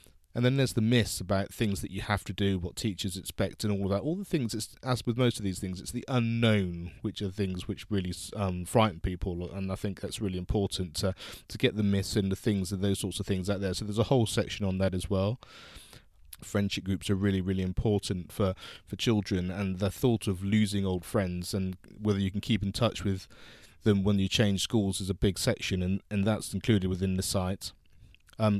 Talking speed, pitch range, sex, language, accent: 235 wpm, 95-110 Hz, male, English, British